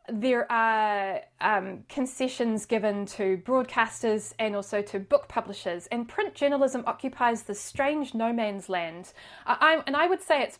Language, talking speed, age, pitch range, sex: English, 145 wpm, 20-39, 195-235 Hz, female